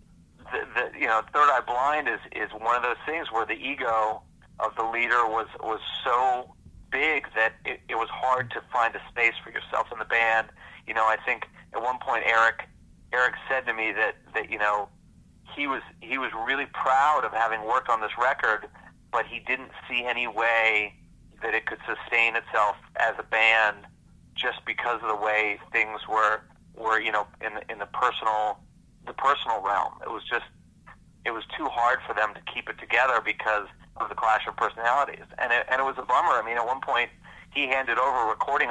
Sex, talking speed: male, 205 wpm